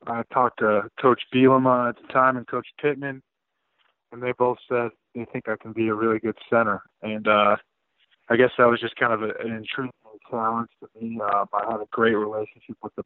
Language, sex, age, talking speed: English, male, 20-39, 210 wpm